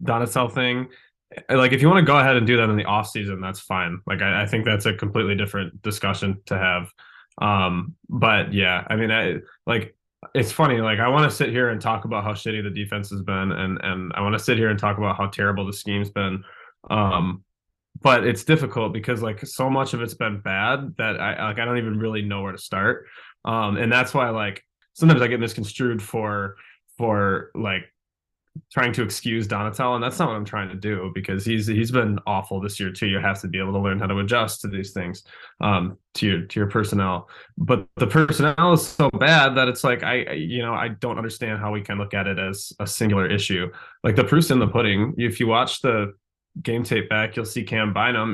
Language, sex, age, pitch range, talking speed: English, male, 20-39, 100-120 Hz, 225 wpm